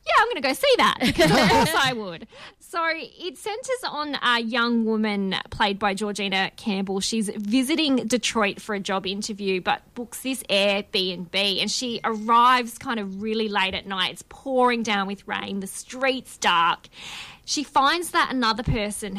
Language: English